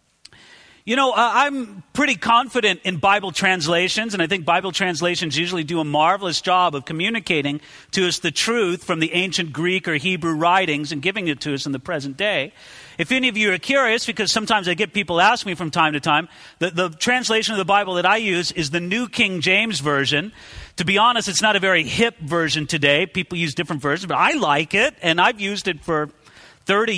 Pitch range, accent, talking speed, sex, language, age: 170-245 Hz, American, 215 wpm, male, English, 40-59